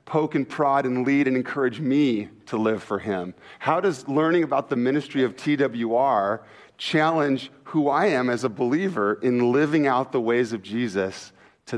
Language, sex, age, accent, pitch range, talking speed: English, male, 40-59, American, 125-155 Hz, 180 wpm